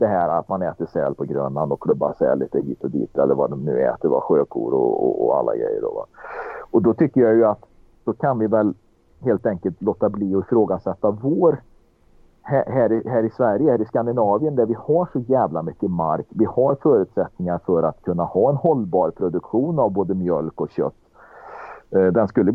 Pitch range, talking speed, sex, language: 95-130 Hz, 210 wpm, male, Swedish